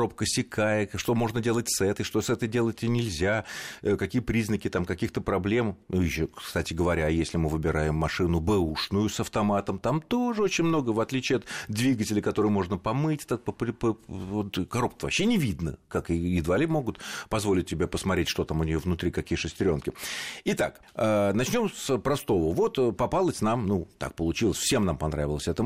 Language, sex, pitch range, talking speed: Russian, male, 85-120 Hz, 170 wpm